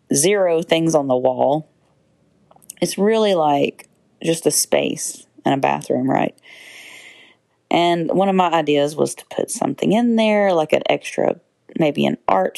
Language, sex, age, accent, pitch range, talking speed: English, female, 40-59, American, 145-190 Hz, 155 wpm